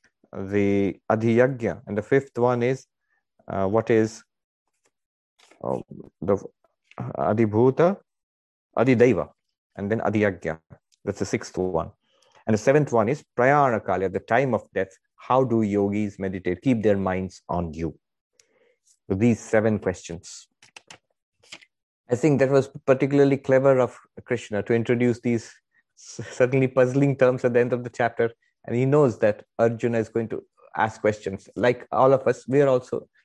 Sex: male